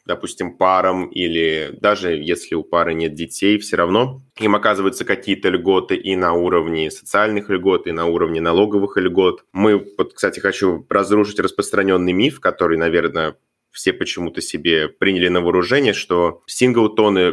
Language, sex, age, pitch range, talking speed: Russian, male, 20-39, 90-115 Hz, 145 wpm